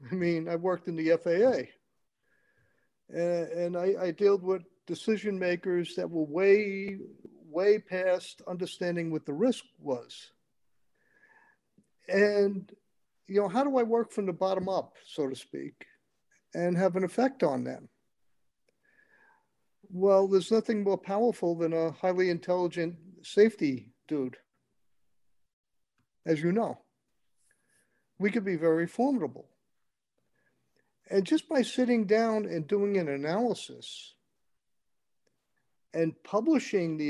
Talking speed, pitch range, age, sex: 125 wpm, 165-215 Hz, 50-69, male